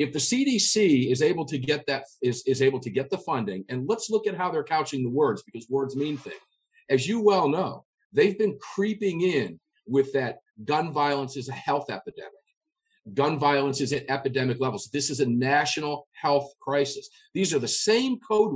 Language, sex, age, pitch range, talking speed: English, male, 50-69, 135-210 Hz, 195 wpm